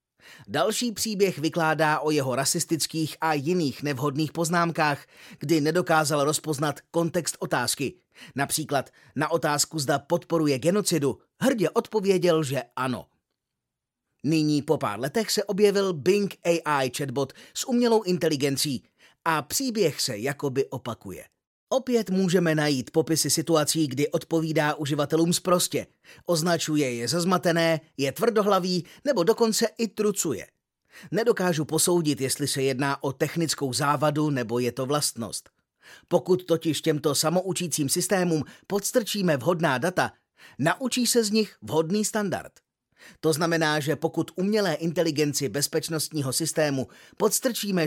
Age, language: 30-49, Czech